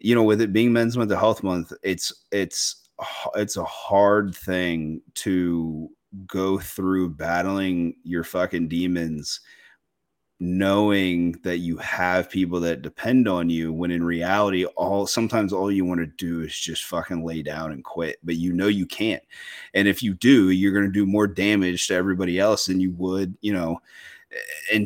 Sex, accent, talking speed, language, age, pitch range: male, American, 175 wpm, English, 30-49, 85-100 Hz